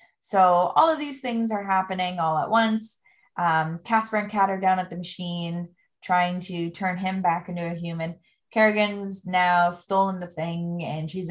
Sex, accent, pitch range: female, American, 165-195 Hz